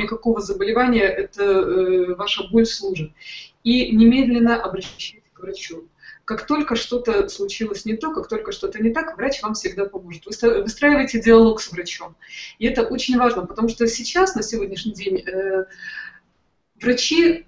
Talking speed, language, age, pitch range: 150 wpm, Russian, 20-39, 195-255 Hz